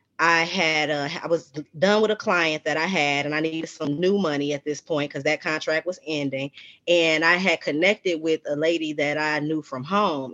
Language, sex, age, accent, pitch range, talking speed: English, female, 20-39, American, 150-185 Hz, 220 wpm